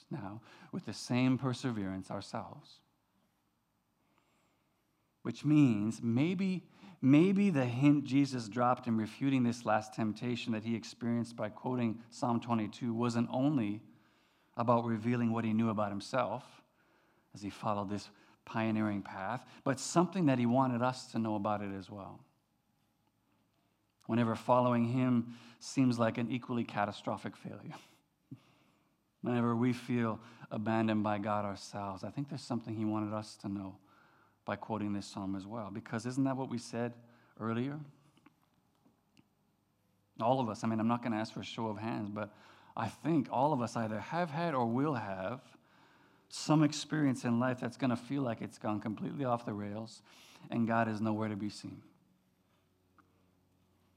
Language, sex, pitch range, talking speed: English, male, 105-125 Hz, 155 wpm